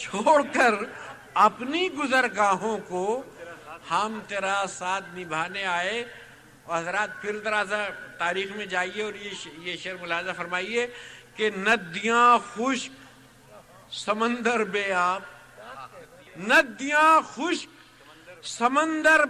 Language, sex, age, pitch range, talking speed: Urdu, male, 50-69, 170-245 Hz, 95 wpm